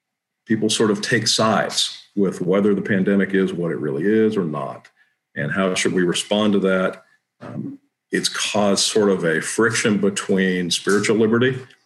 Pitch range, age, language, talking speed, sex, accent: 95-115 Hz, 50-69, English, 165 wpm, male, American